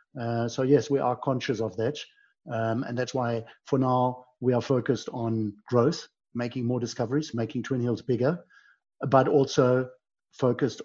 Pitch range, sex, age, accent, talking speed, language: 115-135 Hz, male, 50-69, German, 155 wpm, English